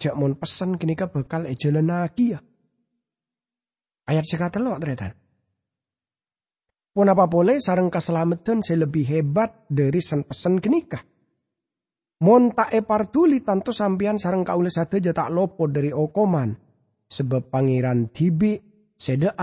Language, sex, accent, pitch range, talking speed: English, male, Indonesian, 135-210 Hz, 115 wpm